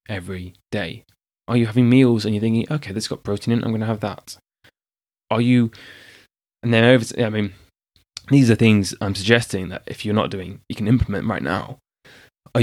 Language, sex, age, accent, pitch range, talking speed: English, male, 20-39, British, 100-120 Hz, 200 wpm